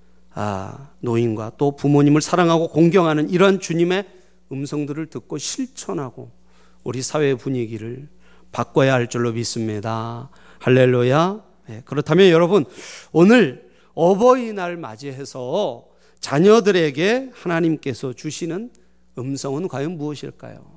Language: Korean